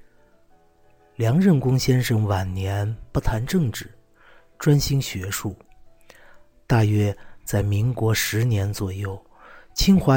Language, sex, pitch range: Chinese, male, 100-130 Hz